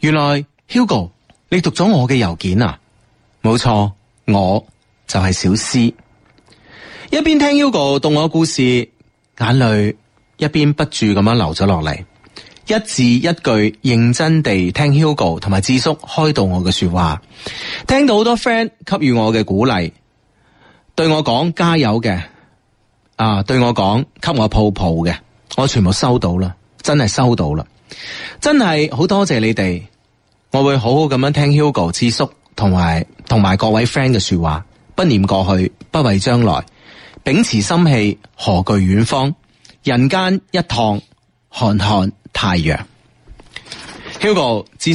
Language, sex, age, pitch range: Chinese, male, 30-49, 100-150 Hz